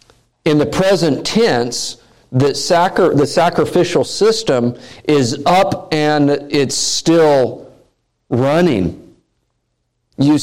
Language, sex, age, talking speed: English, male, 50-69, 90 wpm